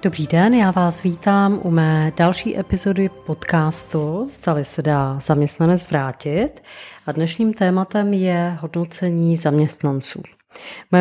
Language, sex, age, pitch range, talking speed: Czech, female, 30-49, 165-200 Hz, 120 wpm